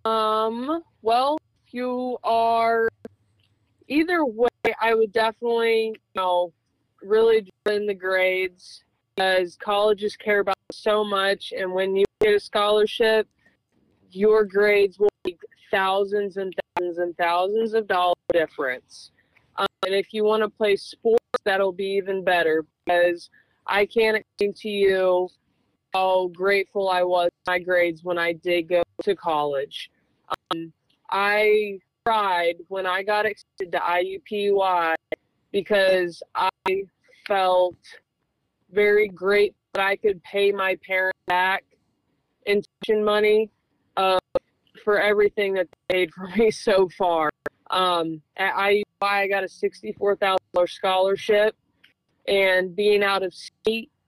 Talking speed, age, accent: 130 wpm, 20-39, American